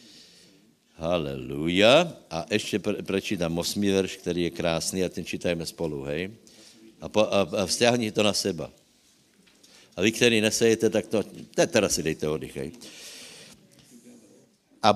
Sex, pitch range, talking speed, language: male, 95-125 Hz, 130 wpm, Slovak